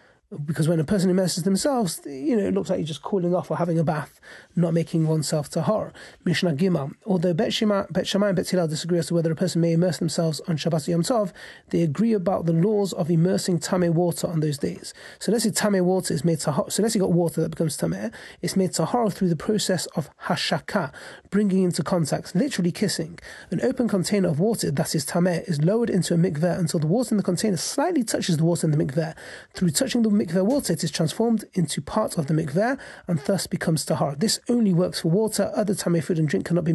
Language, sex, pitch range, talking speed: English, male, 165-200 Hz, 235 wpm